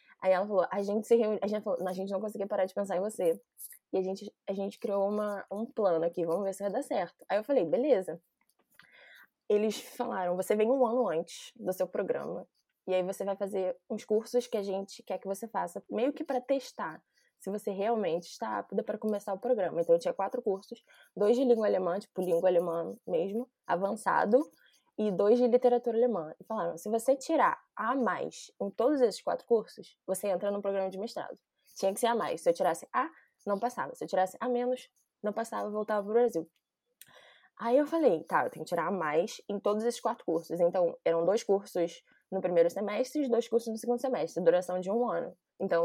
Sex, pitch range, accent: female, 190-245 Hz, Brazilian